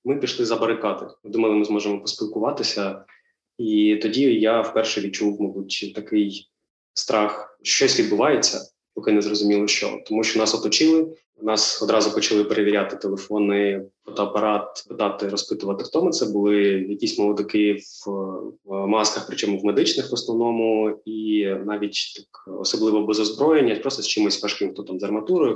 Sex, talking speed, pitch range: male, 145 wpm, 100-110 Hz